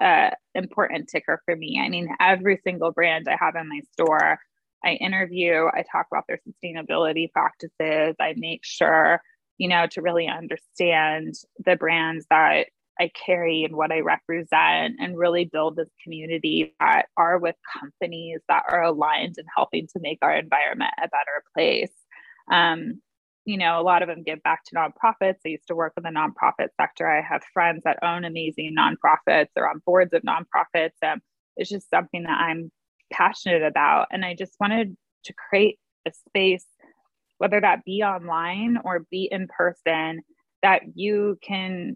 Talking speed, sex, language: 170 wpm, female, English